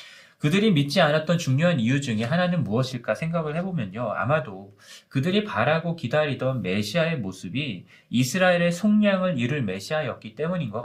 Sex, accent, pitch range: male, native, 120-175 Hz